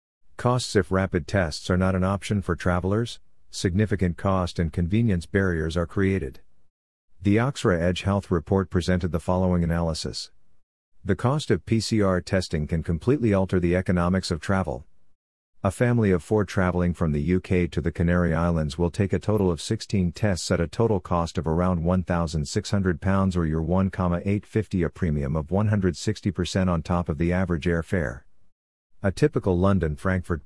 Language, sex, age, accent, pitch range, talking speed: English, male, 50-69, American, 85-100 Hz, 160 wpm